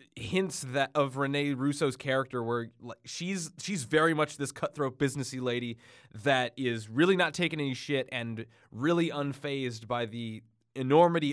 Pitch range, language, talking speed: 120-150 Hz, English, 155 wpm